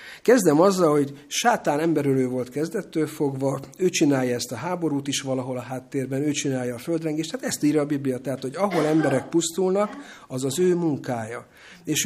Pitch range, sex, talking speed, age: 130-155 Hz, male, 180 wpm, 50-69